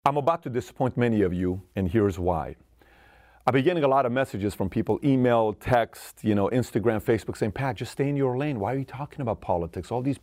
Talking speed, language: 235 wpm, English